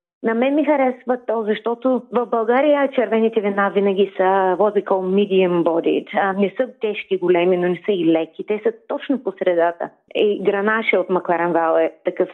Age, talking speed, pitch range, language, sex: 30-49, 165 wpm, 180-235 Hz, Bulgarian, female